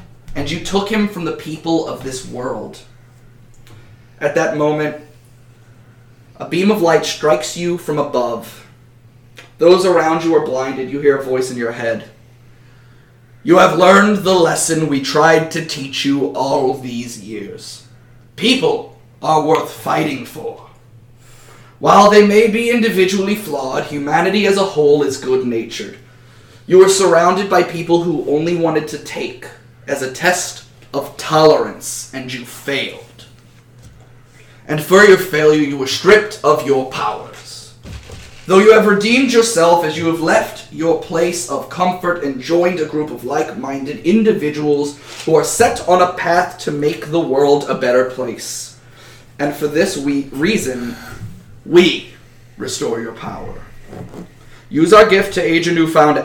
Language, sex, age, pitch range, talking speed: English, male, 30-49, 120-170 Hz, 150 wpm